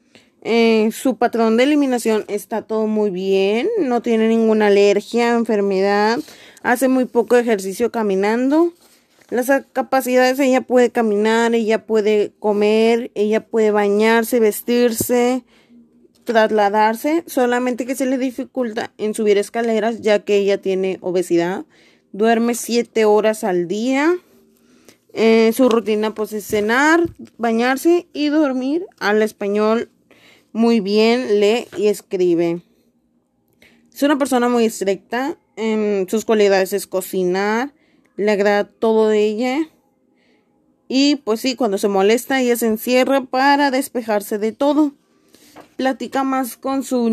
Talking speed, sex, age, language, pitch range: 125 wpm, female, 20-39, Spanish, 210-255 Hz